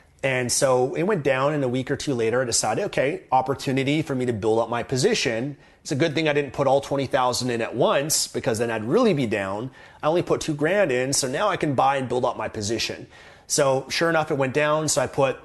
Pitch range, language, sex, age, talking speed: 115-145 Hz, English, male, 30-49, 255 wpm